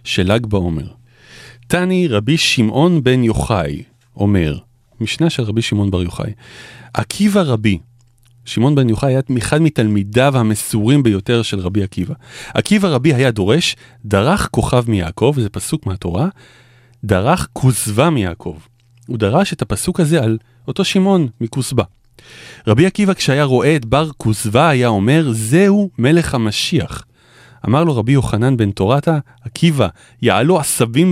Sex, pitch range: male, 110-140 Hz